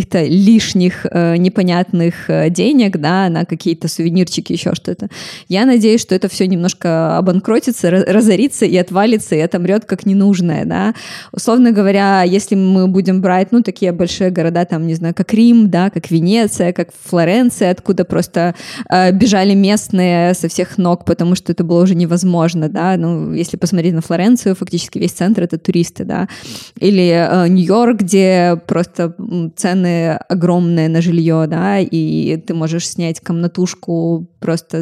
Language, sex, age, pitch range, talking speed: Russian, female, 20-39, 175-205 Hz, 150 wpm